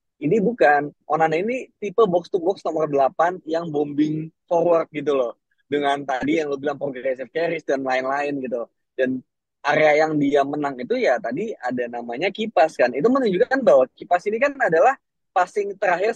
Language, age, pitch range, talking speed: Indonesian, 20-39, 135-180 Hz, 165 wpm